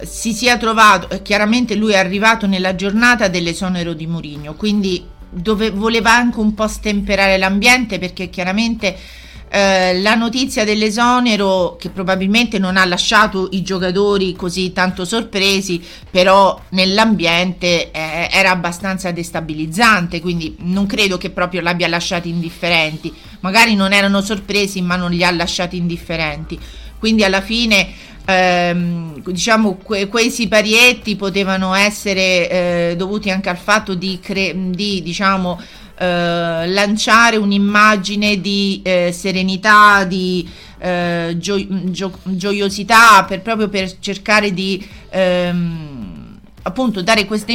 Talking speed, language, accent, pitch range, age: 120 wpm, Italian, native, 180-210 Hz, 40-59